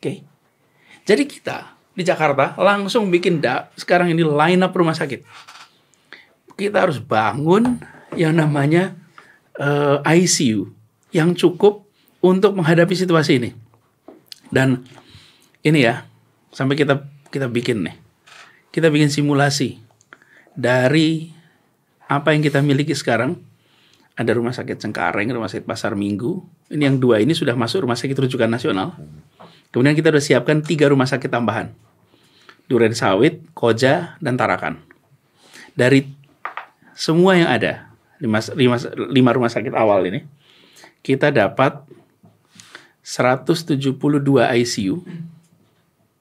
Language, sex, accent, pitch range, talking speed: Indonesian, male, native, 125-170 Hz, 115 wpm